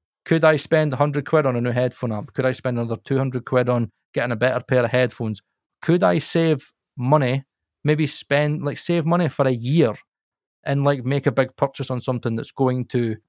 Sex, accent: male, British